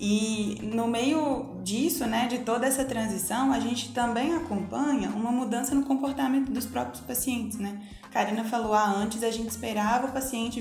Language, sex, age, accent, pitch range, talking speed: Portuguese, female, 20-39, Brazilian, 200-250 Hz, 170 wpm